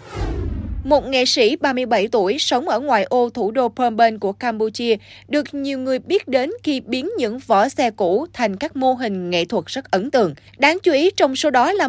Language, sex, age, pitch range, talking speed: Vietnamese, female, 20-39, 225-300 Hz, 210 wpm